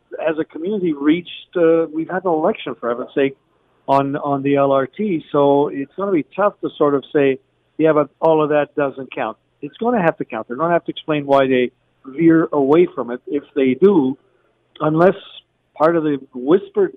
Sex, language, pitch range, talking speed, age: male, English, 135-165 Hz, 210 wpm, 50-69